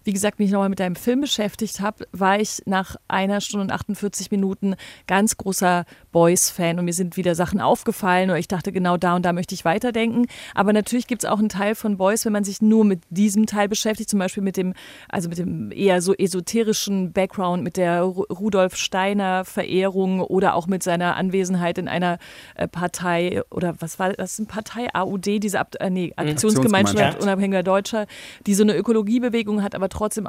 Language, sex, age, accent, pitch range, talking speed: German, female, 30-49, German, 185-210 Hz, 185 wpm